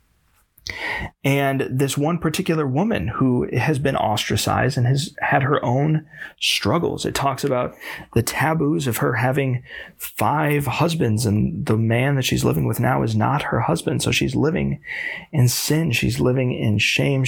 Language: English